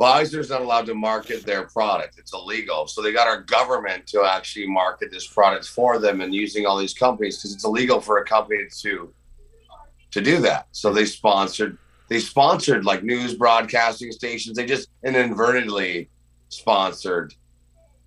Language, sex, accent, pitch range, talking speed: English, male, American, 80-115 Hz, 165 wpm